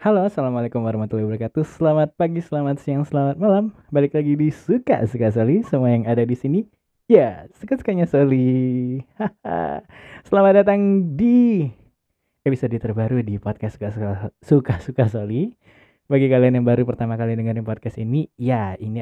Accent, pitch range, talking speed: native, 110-140 Hz, 150 wpm